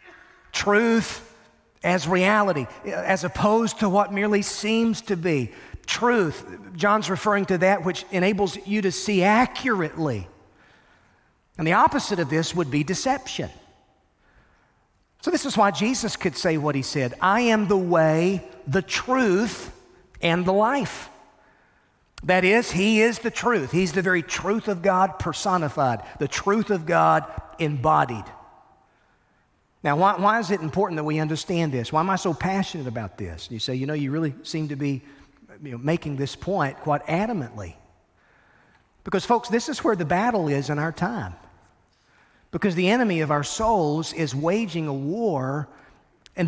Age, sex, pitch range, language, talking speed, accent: 40-59, male, 155-210 Hz, English, 155 wpm, American